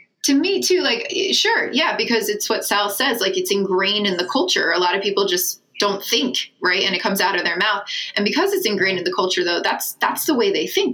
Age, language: 20-39, English